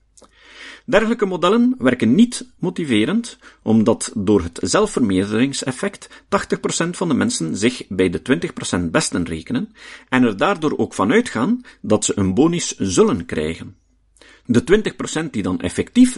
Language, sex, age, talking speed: Dutch, male, 50-69, 135 wpm